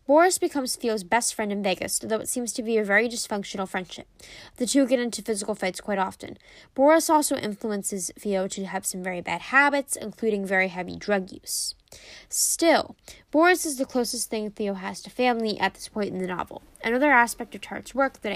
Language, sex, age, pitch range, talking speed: English, female, 10-29, 200-250 Hz, 200 wpm